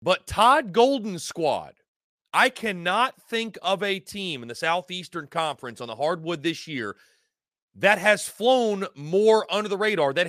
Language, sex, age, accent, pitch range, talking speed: English, male, 30-49, American, 145-205 Hz, 155 wpm